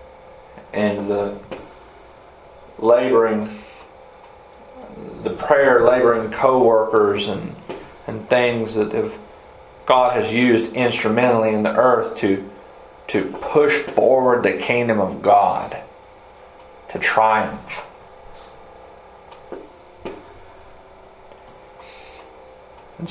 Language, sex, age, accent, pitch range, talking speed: English, male, 40-59, American, 100-115 Hz, 80 wpm